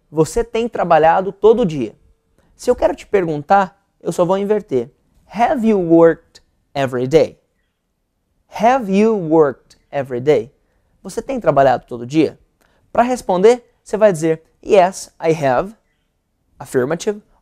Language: Portuguese